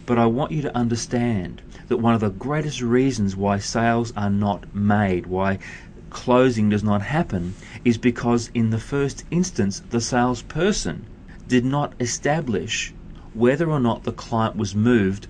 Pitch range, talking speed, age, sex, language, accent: 100-120 Hz, 155 wpm, 30-49, male, English, Australian